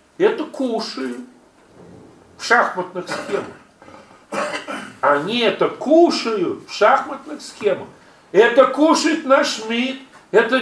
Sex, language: male, Russian